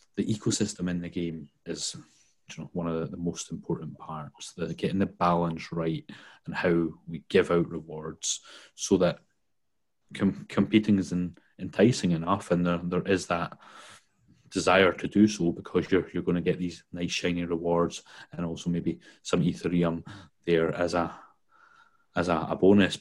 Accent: British